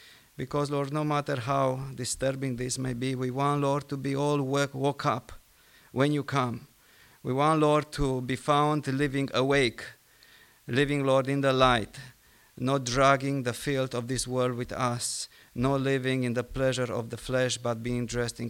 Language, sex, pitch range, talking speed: English, male, 125-145 Hz, 180 wpm